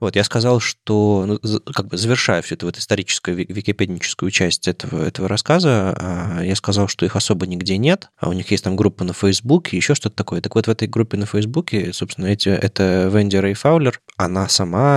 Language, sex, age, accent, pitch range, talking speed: Russian, male, 20-39, native, 90-110 Hz, 200 wpm